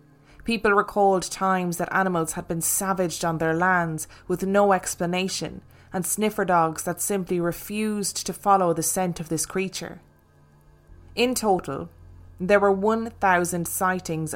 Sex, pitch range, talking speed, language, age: female, 160-195 Hz, 140 wpm, English, 20-39